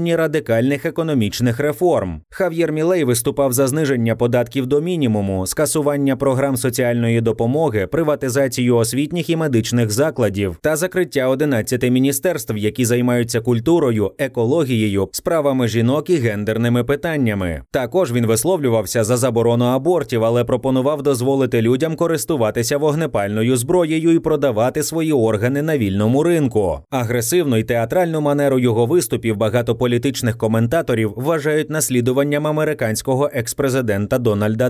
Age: 30-49